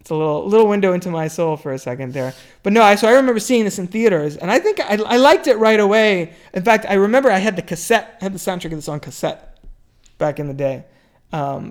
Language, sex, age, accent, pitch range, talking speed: English, male, 20-39, American, 155-190 Hz, 265 wpm